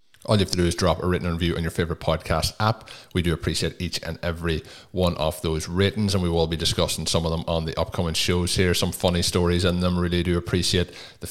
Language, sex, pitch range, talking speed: English, male, 85-105 Hz, 250 wpm